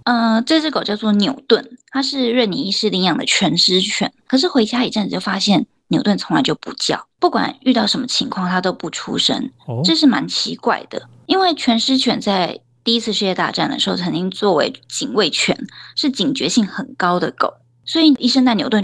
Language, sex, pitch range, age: Chinese, female, 190-260 Hz, 20-39